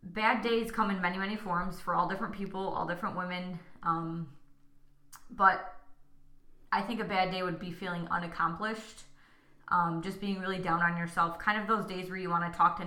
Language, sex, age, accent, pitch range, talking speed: English, female, 20-39, American, 170-195 Hz, 195 wpm